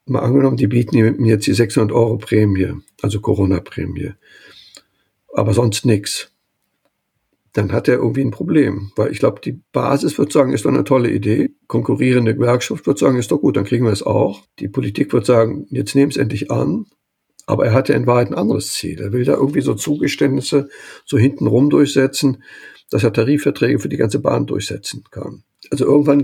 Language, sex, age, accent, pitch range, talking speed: German, male, 60-79, German, 115-145 Hz, 185 wpm